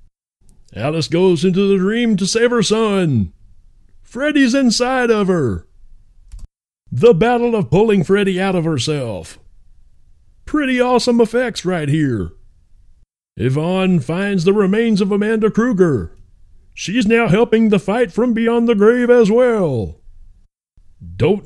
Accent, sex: American, male